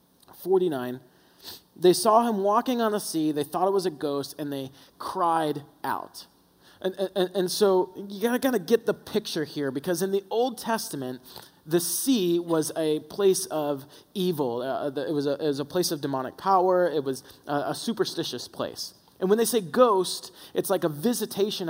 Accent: American